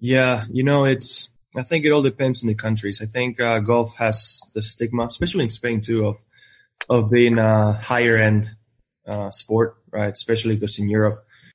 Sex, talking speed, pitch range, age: male, 185 wpm, 105-120 Hz, 20-39